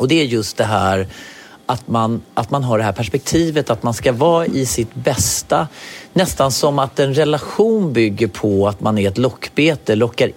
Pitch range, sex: 105-130 Hz, male